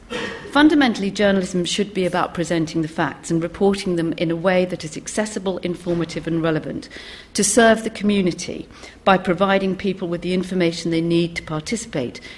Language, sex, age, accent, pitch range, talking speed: English, female, 40-59, British, 170-205 Hz, 165 wpm